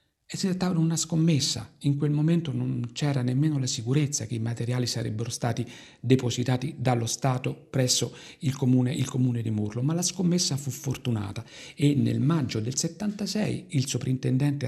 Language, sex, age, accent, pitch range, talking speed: Italian, male, 50-69, native, 115-145 Hz, 150 wpm